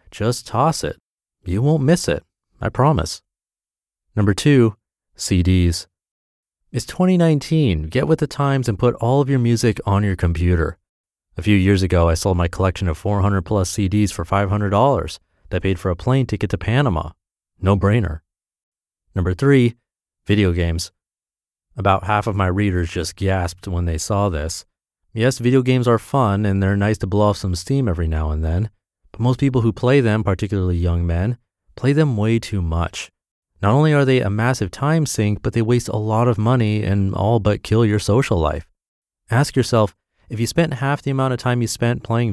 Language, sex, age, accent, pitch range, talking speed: English, male, 30-49, American, 90-120 Hz, 185 wpm